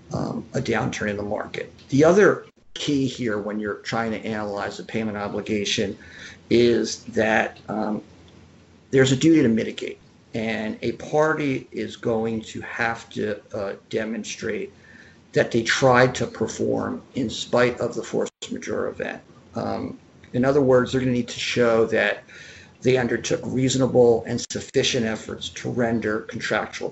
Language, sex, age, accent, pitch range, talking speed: English, male, 50-69, American, 110-125 Hz, 150 wpm